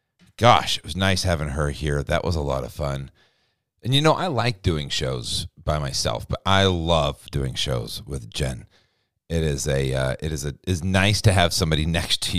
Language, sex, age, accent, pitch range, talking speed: English, male, 40-59, American, 75-95 Hz, 205 wpm